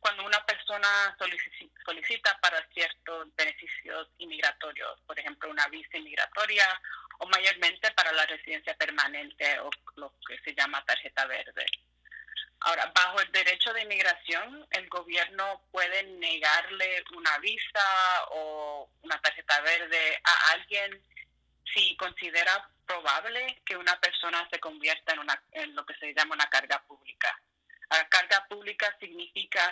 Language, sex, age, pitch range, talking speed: Spanish, female, 30-49, 170-205 Hz, 130 wpm